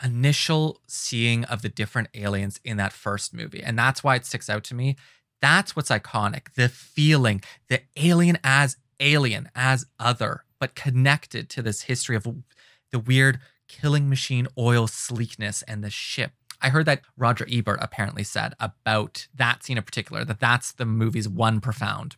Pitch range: 120-145 Hz